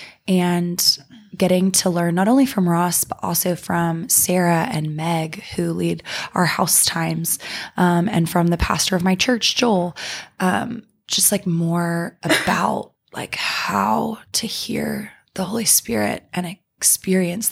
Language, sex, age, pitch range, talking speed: English, female, 20-39, 170-205 Hz, 145 wpm